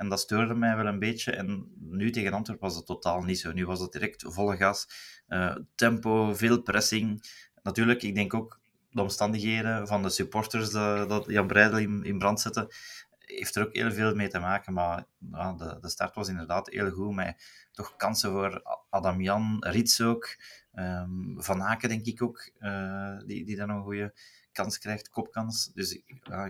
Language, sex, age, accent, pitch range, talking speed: Dutch, male, 30-49, Belgian, 95-110 Hz, 190 wpm